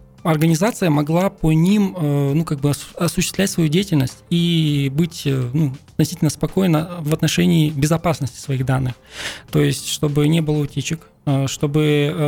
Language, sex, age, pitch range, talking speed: Russian, male, 20-39, 145-170 Hz, 120 wpm